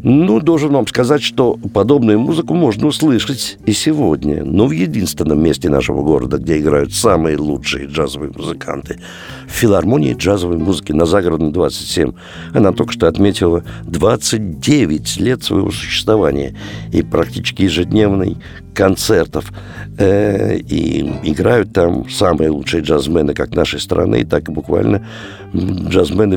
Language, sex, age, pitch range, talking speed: Russian, male, 60-79, 80-115 Hz, 125 wpm